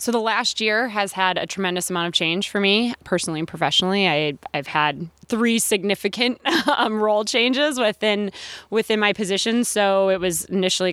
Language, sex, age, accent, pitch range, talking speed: English, female, 20-39, American, 170-205 Hz, 175 wpm